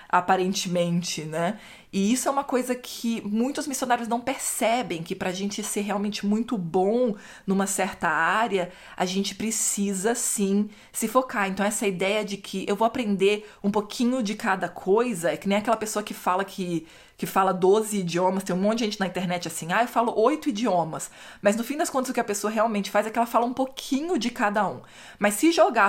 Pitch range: 185-235 Hz